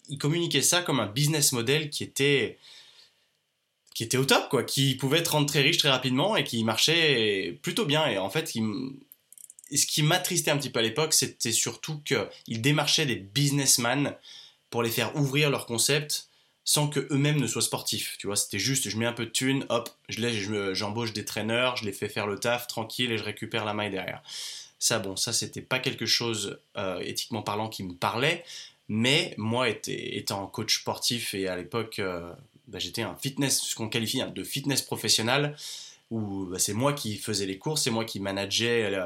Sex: male